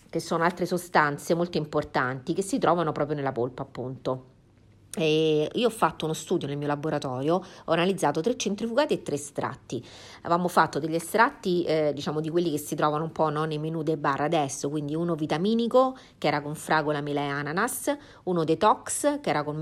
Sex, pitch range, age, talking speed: female, 145-185 Hz, 40-59, 195 wpm